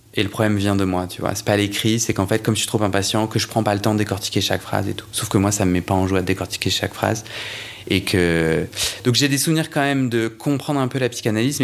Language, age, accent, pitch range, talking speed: French, 20-39, French, 105-125 Hz, 300 wpm